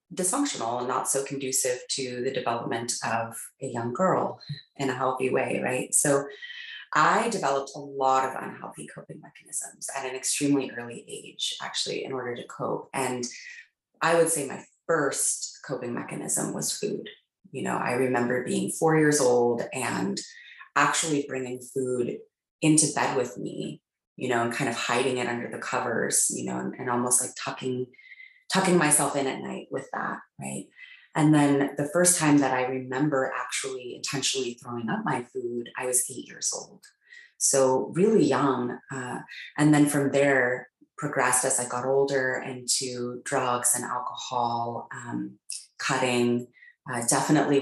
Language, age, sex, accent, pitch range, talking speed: English, 30-49, female, American, 125-145 Hz, 160 wpm